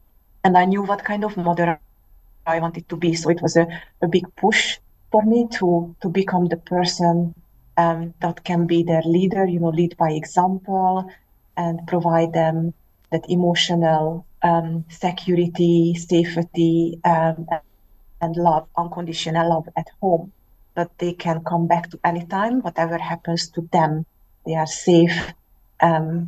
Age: 30-49